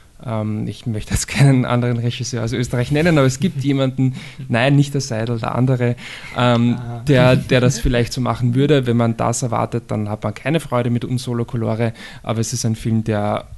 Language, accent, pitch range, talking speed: German, German, 115-130 Hz, 200 wpm